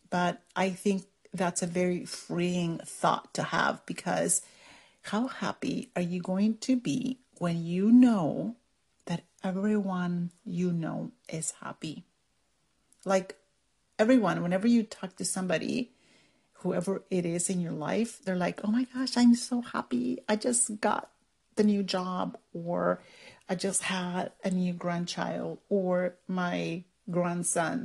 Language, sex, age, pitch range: English, female, 40-59, 180-220 Hz